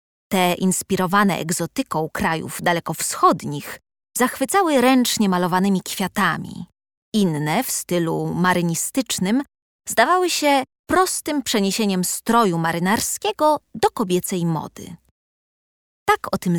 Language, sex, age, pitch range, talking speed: Polish, female, 20-39, 180-270 Hz, 90 wpm